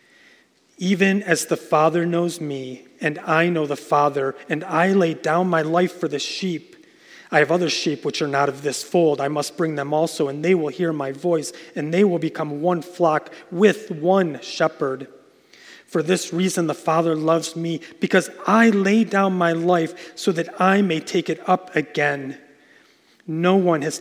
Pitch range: 150-185 Hz